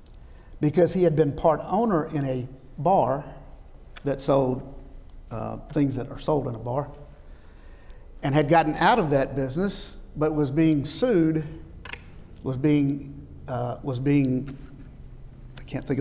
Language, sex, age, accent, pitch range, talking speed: English, male, 50-69, American, 125-155 Hz, 140 wpm